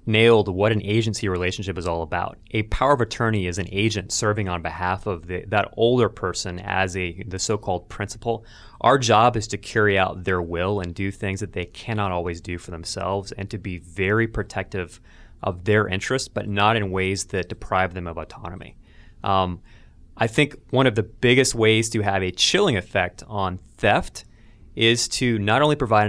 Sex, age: male, 20-39